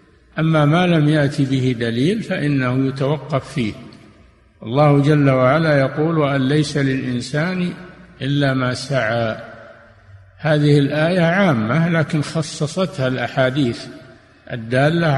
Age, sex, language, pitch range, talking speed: 60-79, male, Arabic, 130-160 Hz, 105 wpm